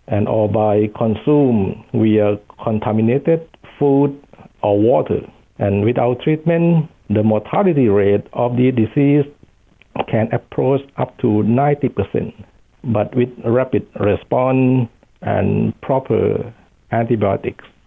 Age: 60-79